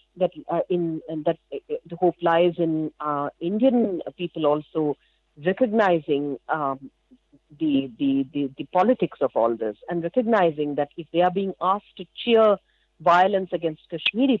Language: English